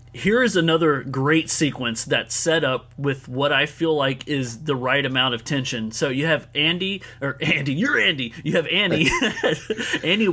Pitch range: 130-165 Hz